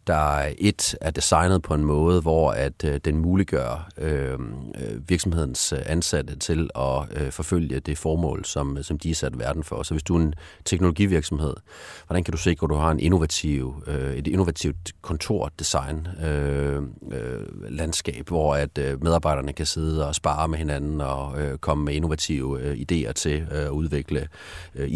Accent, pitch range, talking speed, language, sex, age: native, 70-85 Hz, 170 wpm, Danish, male, 30-49